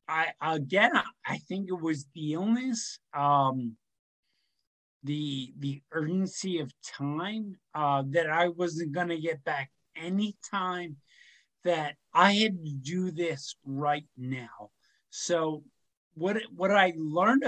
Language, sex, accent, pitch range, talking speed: English, male, American, 145-190 Hz, 130 wpm